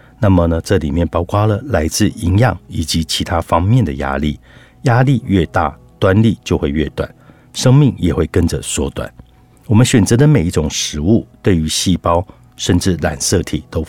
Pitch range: 80-115 Hz